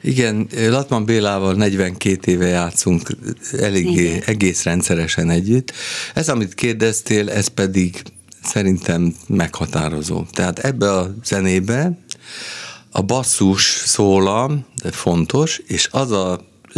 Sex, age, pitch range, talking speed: male, 50-69, 85-110 Hz, 100 wpm